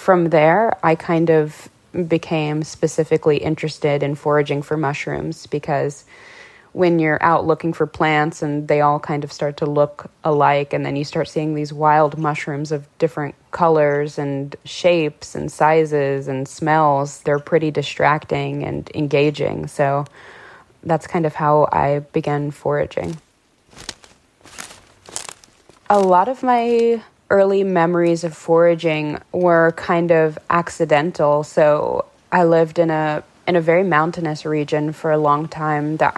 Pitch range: 145-165 Hz